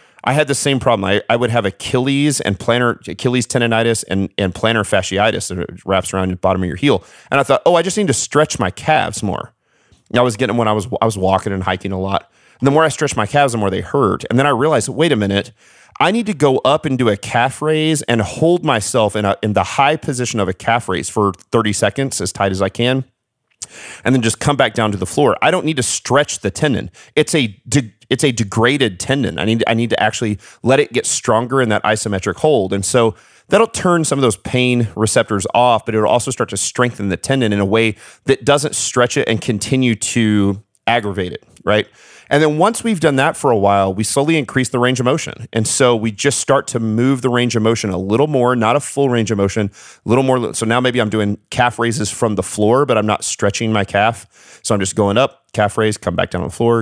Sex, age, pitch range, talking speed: male, 40-59, 105-135 Hz, 250 wpm